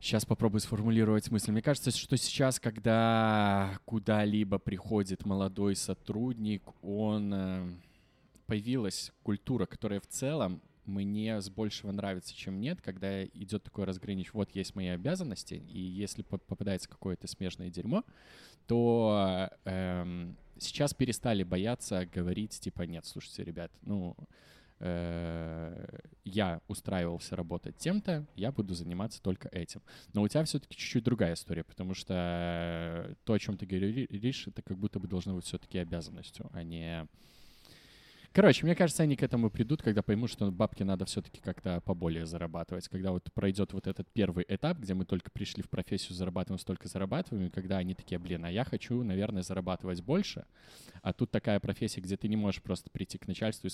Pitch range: 90-110 Hz